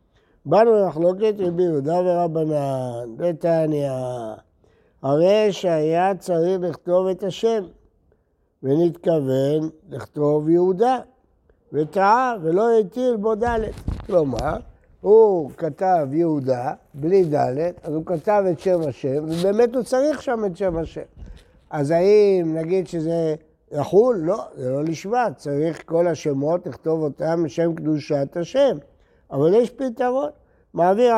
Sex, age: male, 60-79